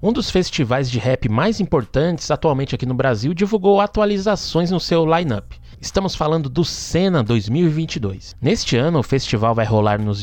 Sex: male